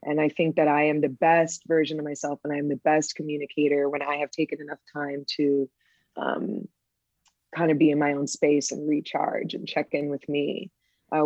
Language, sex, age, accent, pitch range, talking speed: English, female, 20-39, American, 150-175 Hz, 210 wpm